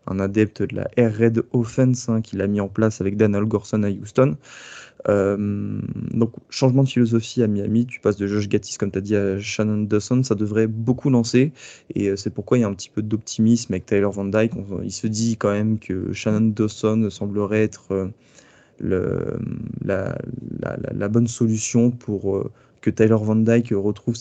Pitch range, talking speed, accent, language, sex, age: 105-120 Hz, 190 wpm, French, French, male, 20-39